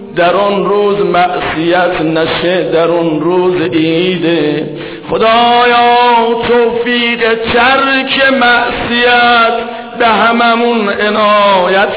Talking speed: 80 wpm